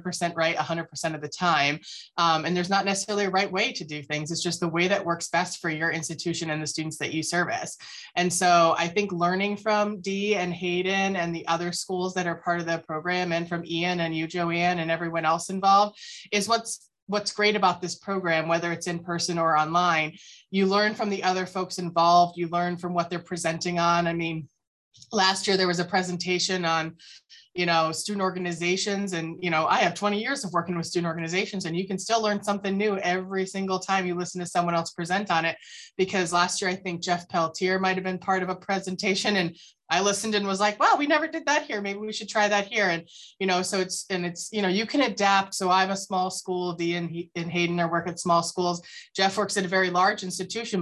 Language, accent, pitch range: English, American, 170-195 Hz